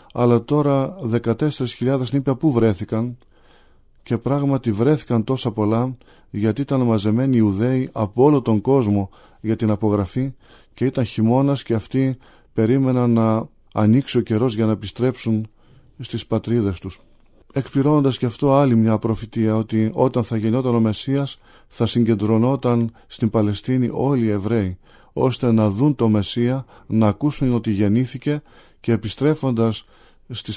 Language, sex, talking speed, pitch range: Greek, male, 135 wpm, 110-130 Hz